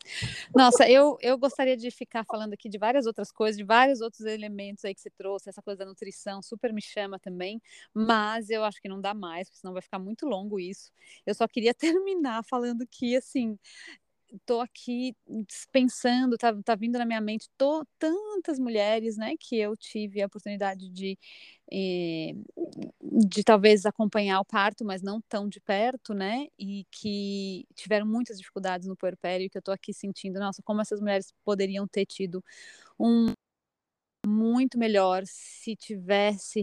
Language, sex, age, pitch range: Portuguese, female, 20-39, 195-230 Hz